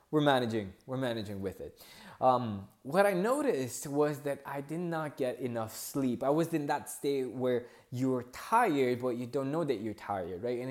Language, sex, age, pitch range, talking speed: English, male, 20-39, 115-155 Hz, 195 wpm